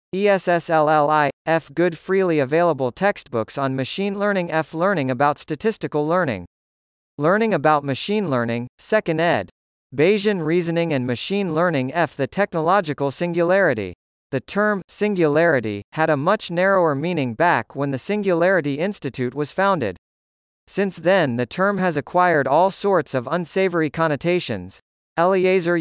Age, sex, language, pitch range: 40-59, male, English, 135-190 Hz